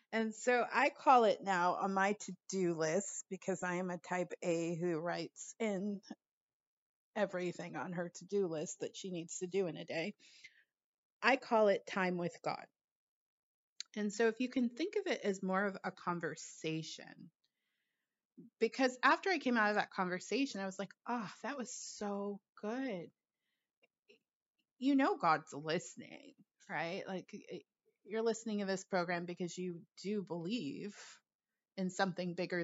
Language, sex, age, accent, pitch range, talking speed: English, female, 30-49, American, 180-240 Hz, 155 wpm